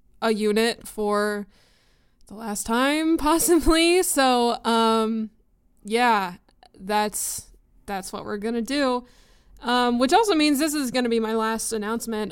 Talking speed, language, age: 125 wpm, English, 20-39